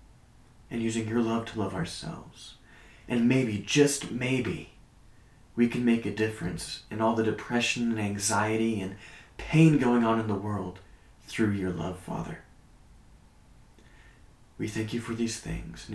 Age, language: 30-49, English